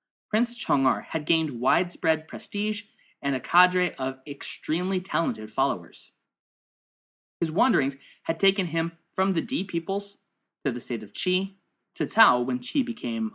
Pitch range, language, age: 160-225 Hz, English, 20-39